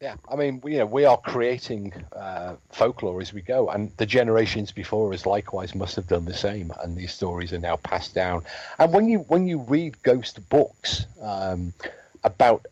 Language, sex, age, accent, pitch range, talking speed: English, male, 40-59, British, 90-120 Hz, 200 wpm